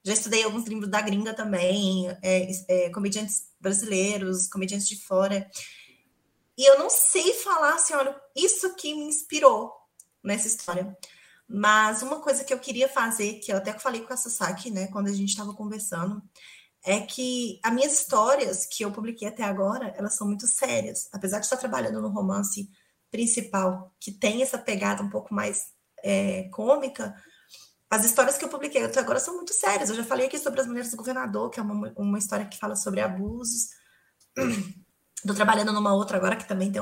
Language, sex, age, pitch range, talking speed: Portuguese, female, 20-39, 200-265 Hz, 180 wpm